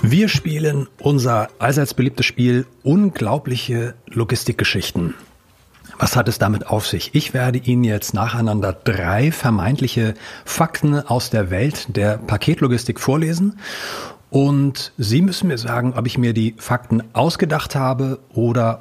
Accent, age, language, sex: German, 40-59, German, male